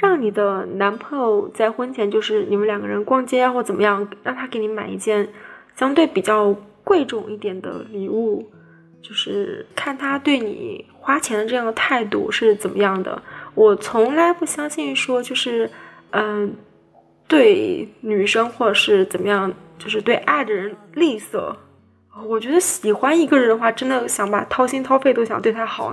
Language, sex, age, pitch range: Chinese, female, 20-39, 205-275 Hz